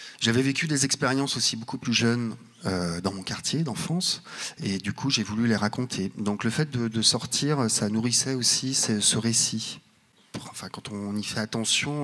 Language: French